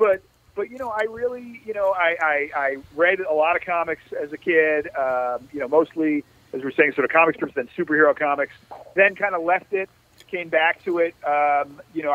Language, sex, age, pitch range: English, male, 40-59, 140-170 Hz